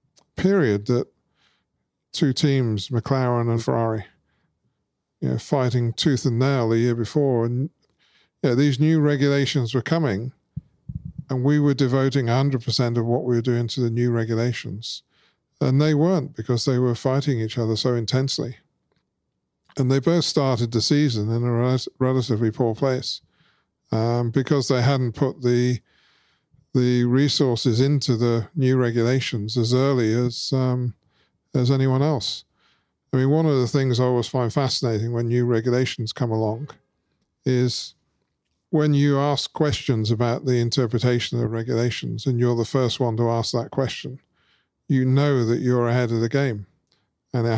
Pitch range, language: 115-135 Hz, English